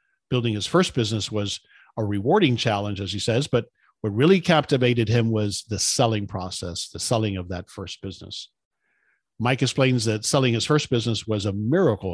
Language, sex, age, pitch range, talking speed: English, male, 50-69, 105-130 Hz, 180 wpm